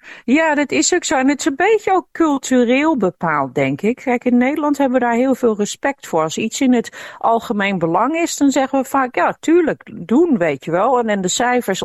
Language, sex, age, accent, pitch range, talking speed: Dutch, female, 50-69, Dutch, 160-230 Hz, 235 wpm